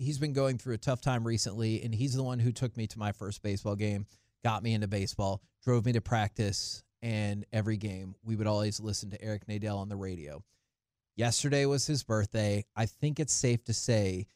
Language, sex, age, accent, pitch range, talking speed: English, male, 30-49, American, 110-135 Hz, 215 wpm